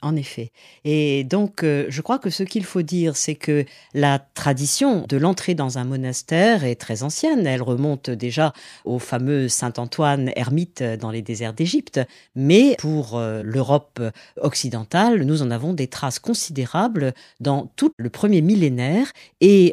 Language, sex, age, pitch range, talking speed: French, female, 40-59, 125-175 Hz, 155 wpm